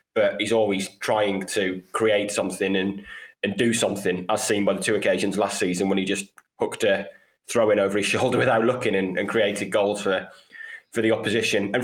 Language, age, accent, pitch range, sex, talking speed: English, 20-39, British, 95-105 Hz, male, 205 wpm